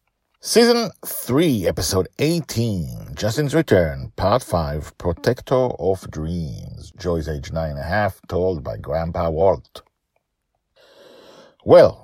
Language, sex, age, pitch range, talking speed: English, male, 50-69, 75-110 Hz, 110 wpm